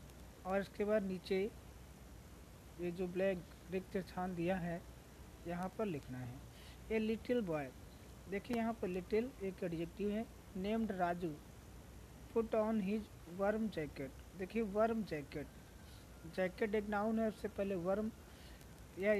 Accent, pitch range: native, 175-210 Hz